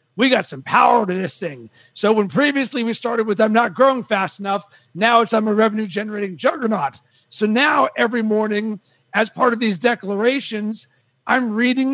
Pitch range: 210-250 Hz